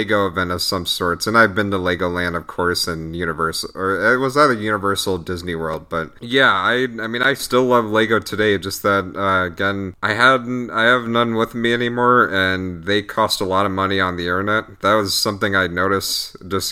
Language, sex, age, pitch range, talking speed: English, male, 30-49, 90-105 Hz, 210 wpm